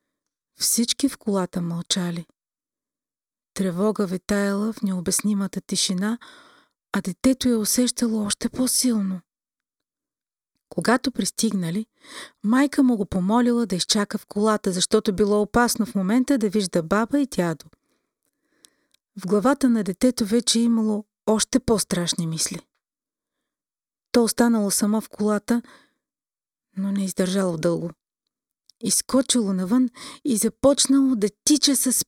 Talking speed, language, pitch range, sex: 110 wpm, Bulgarian, 195-260 Hz, female